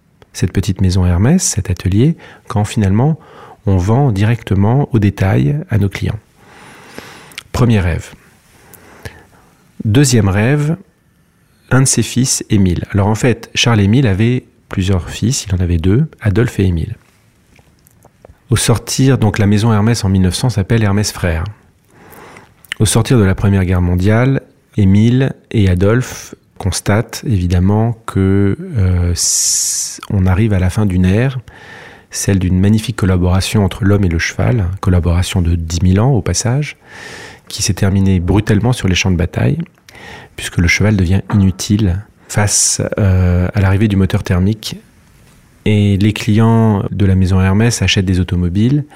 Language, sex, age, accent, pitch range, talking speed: English, male, 40-59, French, 95-115 Hz, 145 wpm